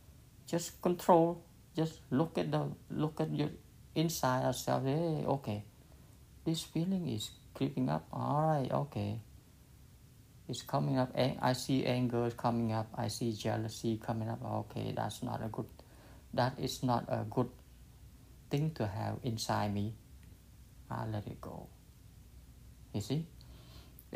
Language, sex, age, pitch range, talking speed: English, male, 60-79, 110-130 Hz, 135 wpm